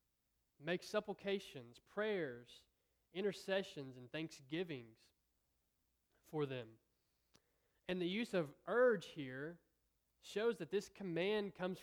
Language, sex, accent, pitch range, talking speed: English, male, American, 130-175 Hz, 95 wpm